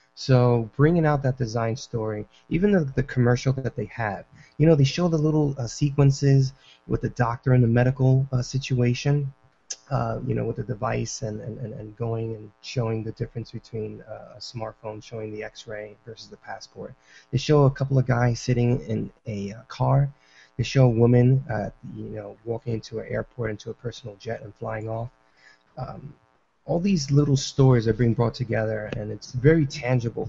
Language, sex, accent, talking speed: English, male, American, 190 wpm